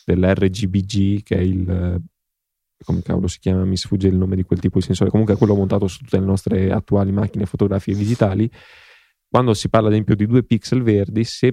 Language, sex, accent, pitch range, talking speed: Italian, male, native, 95-110 Hz, 205 wpm